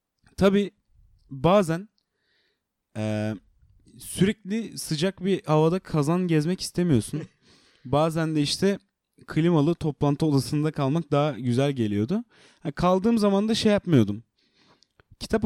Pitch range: 125-180 Hz